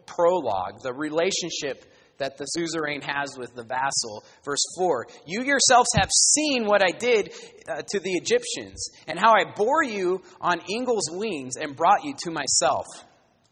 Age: 30-49